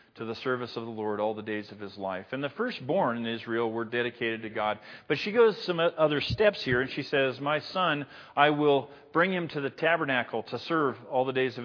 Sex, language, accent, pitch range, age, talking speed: male, English, American, 120-150 Hz, 40-59, 235 wpm